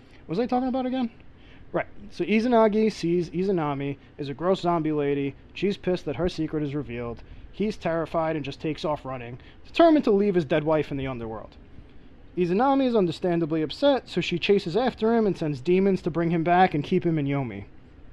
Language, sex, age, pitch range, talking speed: English, male, 20-39, 155-200 Hz, 200 wpm